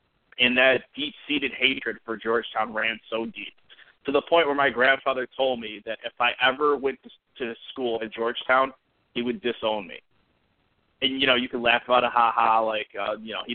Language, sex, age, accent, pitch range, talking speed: English, male, 30-49, American, 115-170 Hz, 195 wpm